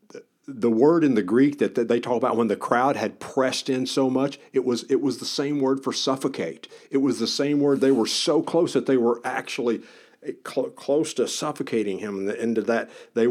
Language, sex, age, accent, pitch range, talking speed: English, male, 50-69, American, 110-130 Hz, 225 wpm